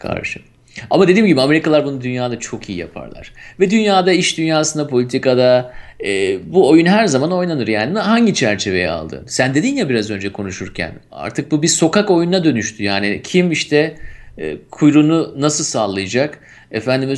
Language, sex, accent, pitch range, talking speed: Turkish, male, native, 120-175 Hz, 155 wpm